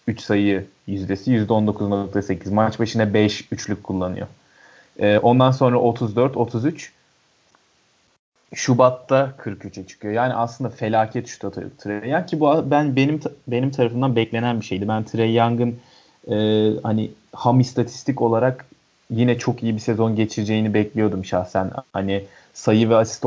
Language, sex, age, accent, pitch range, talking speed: Turkish, male, 30-49, native, 105-125 Hz, 135 wpm